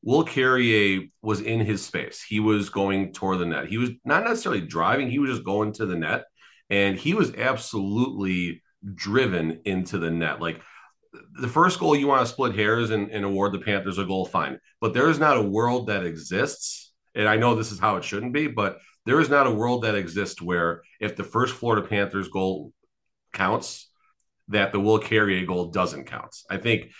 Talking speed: 200 wpm